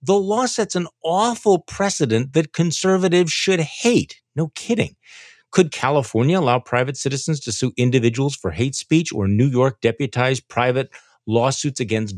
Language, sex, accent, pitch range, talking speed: English, male, American, 110-145 Hz, 150 wpm